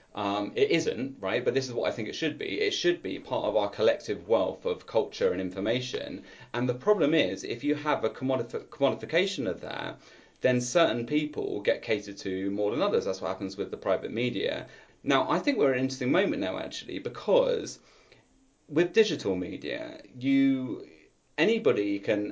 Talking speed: 185 wpm